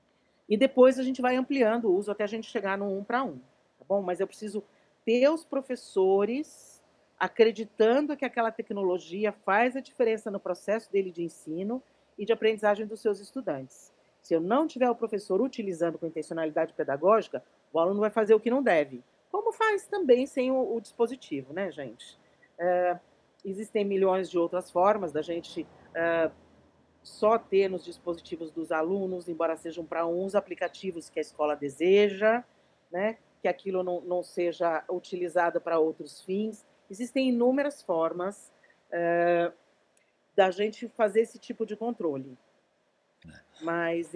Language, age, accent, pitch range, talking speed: Portuguese, 40-59, Brazilian, 175-230 Hz, 155 wpm